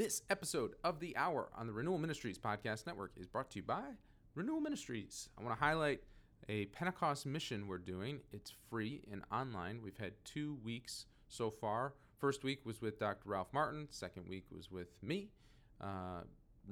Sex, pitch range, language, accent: male, 100-130 Hz, English, American